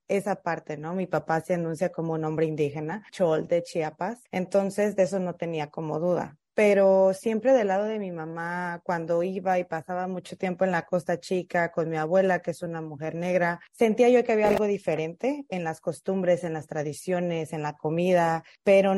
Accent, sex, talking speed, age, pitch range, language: Mexican, female, 195 wpm, 20-39, 170-205 Hz, English